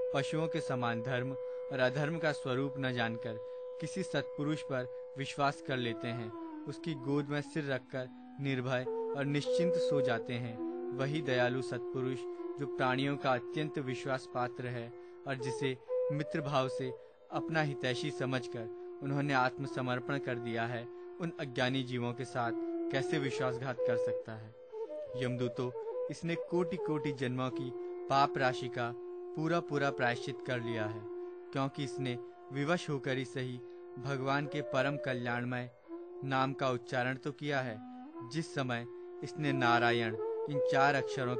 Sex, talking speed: male, 135 wpm